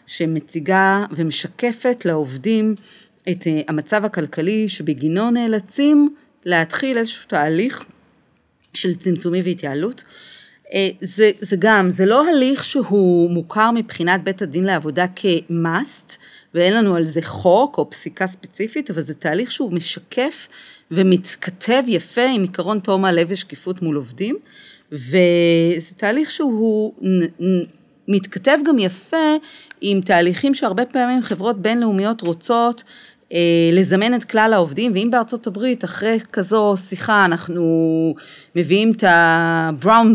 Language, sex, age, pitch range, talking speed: Hebrew, female, 40-59, 170-230 Hz, 120 wpm